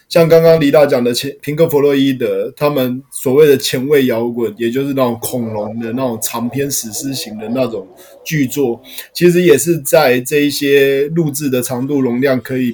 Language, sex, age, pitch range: Chinese, male, 20-39, 125-150 Hz